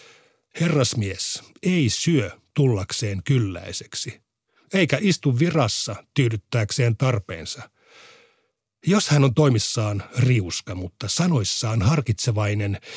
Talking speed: 85 wpm